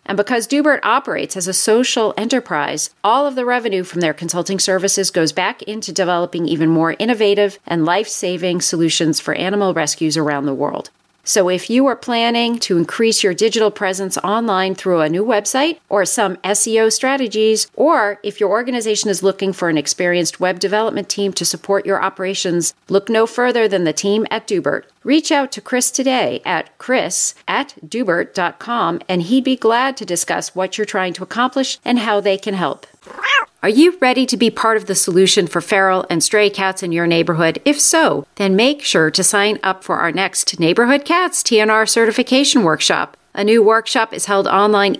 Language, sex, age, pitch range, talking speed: English, female, 40-59, 185-240 Hz, 185 wpm